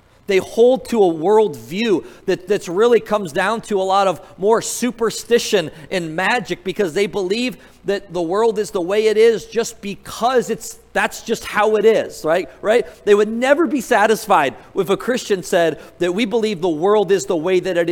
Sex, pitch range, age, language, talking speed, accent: male, 170-220 Hz, 40-59, English, 195 wpm, American